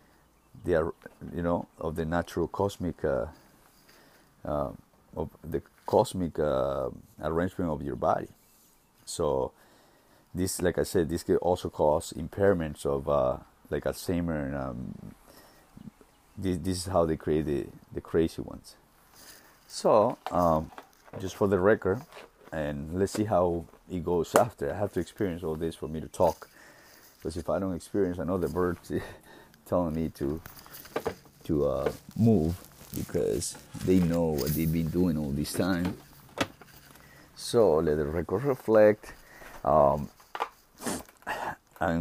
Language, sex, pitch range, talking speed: English, male, 75-90 Hz, 135 wpm